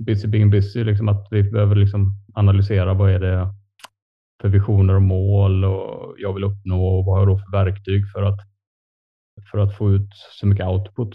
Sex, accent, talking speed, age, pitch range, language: male, Norwegian, 190 wpm, 30-49, 100-110 Hz, Swedish